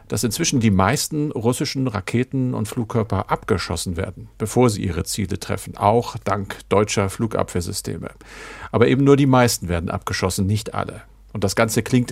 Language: German